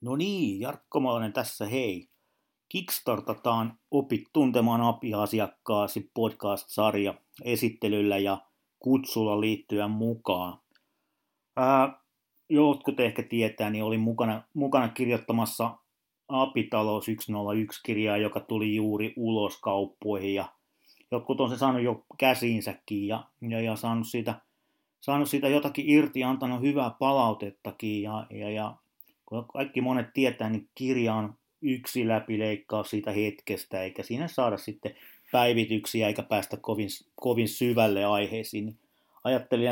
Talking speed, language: 115 wpm, Finnish